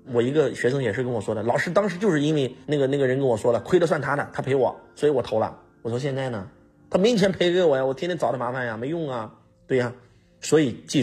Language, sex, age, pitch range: Chinese, male, 30-49, 105-160 Hz